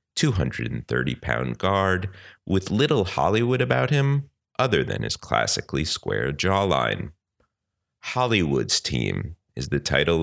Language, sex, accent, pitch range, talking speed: English, male, American, 70-105 Hz, 105 wpm